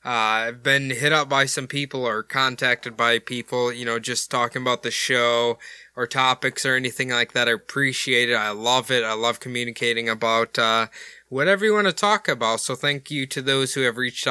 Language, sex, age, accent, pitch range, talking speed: English, male, 20-39, American, 120-140 Hz, 210 wpm